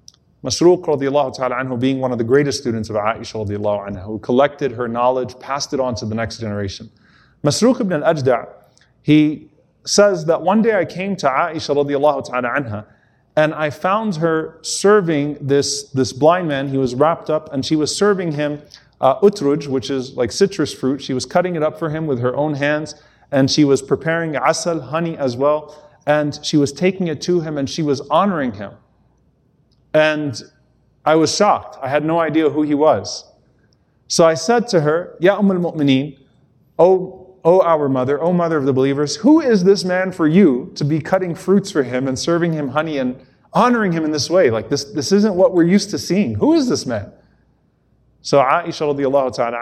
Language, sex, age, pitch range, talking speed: English, male, 30-49, 130-165 Hz, 195 wpm